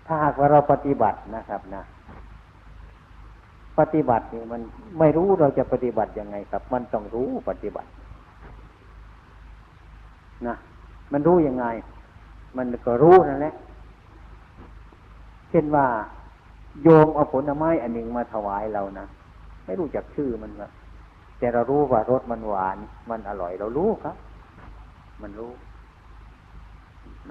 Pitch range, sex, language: 90-135 Hz, male, Thai